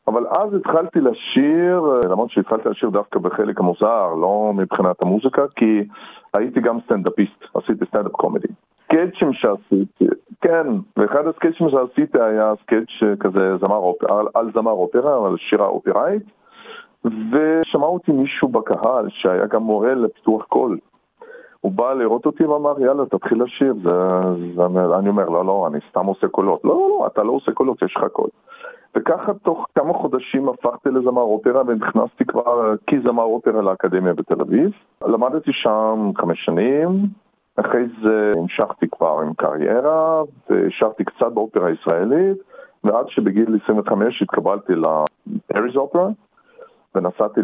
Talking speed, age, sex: 135 wpm, 40-59, male